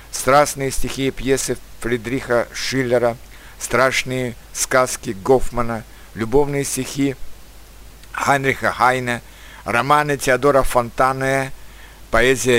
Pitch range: 115-135 Hz